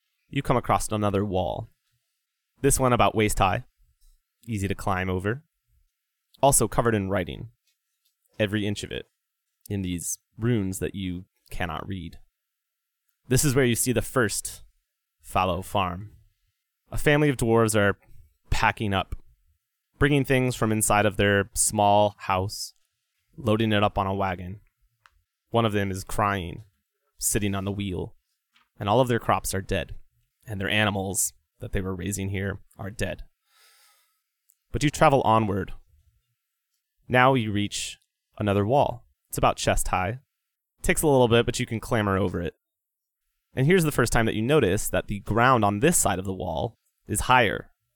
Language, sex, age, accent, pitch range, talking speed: English, male, 20-39, American, 95-120 Hz, 160 wpm